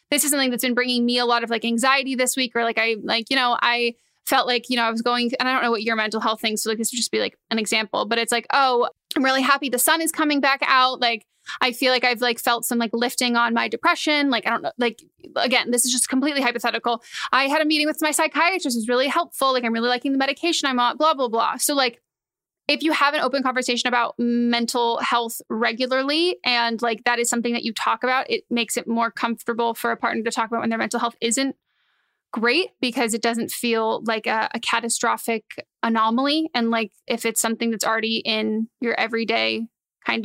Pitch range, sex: 230-270 Hz, female